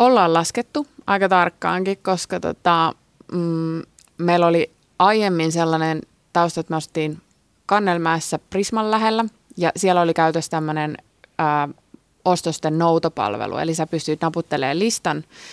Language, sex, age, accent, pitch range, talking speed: Finnish, female, 20-39, native, 155-195 Hz, 115 wpm